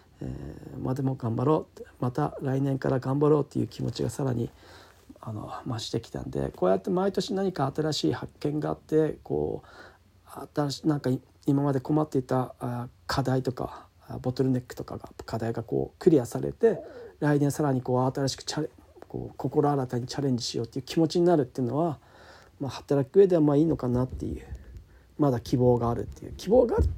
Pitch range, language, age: 115-150 Hz, Japanese, 40-59